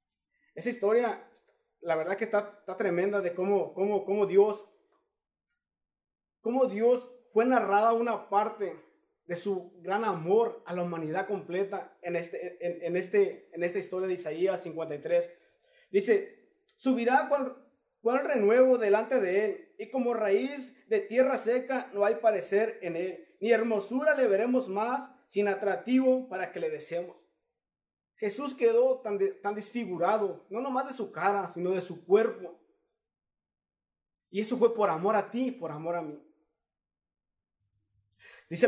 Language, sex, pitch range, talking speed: Spanish, male, 180-255 Hz, 145 wpm